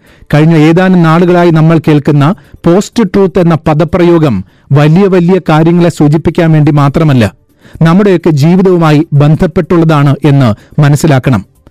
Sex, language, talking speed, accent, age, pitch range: male, Malayalam, 100 wpm, native, 40-59, 145-175 Hz